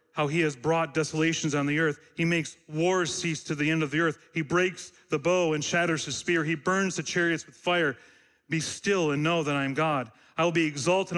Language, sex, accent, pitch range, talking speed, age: English, male, American, 155-195 Hz, 235 wpm, 40-59